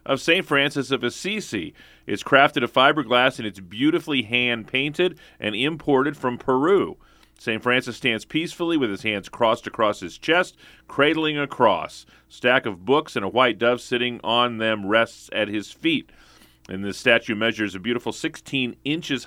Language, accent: English, American